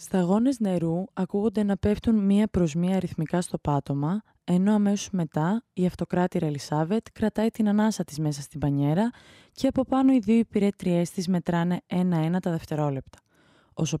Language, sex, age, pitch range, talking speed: Greek, female, 20-39, 160-230 Hz, 155 wpm